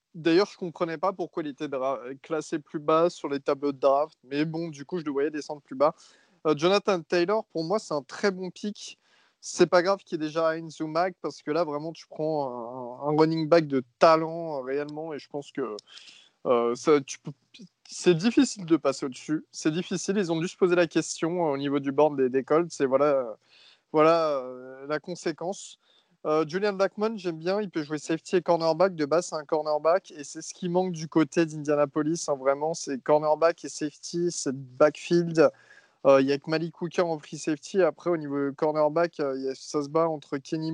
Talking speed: 220 wpm